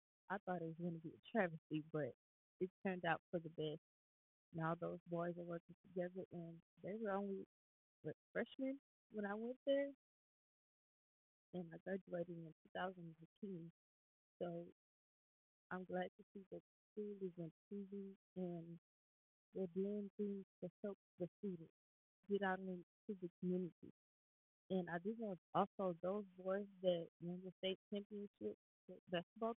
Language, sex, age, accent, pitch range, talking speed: English, female, 20-39, American, 170-200 Hz, 155 wpm